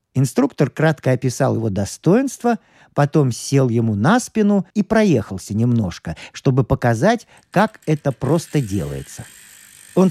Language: Russian